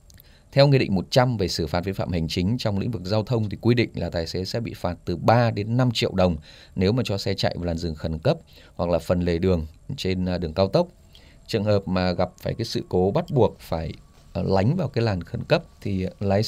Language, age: Vietnamese, 20-39